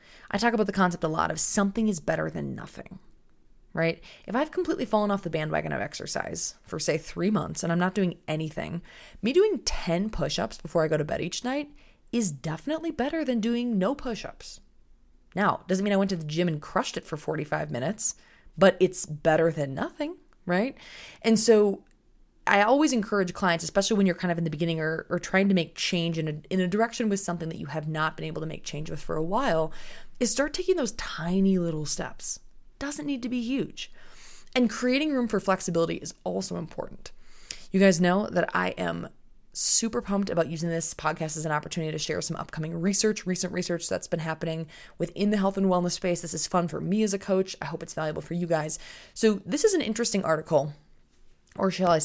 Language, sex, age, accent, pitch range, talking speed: English, female, 20-39, American, 160-215 Hz, 215 wpm